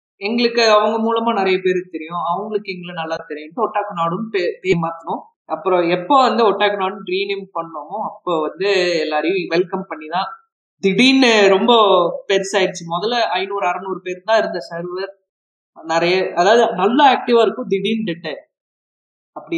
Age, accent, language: 20-39, native, Tamil